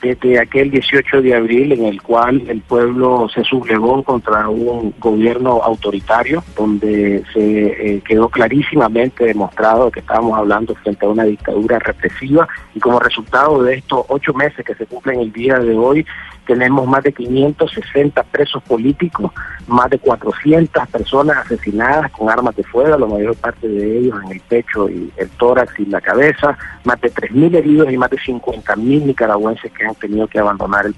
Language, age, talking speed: Spanish, 50-69, 170 wpm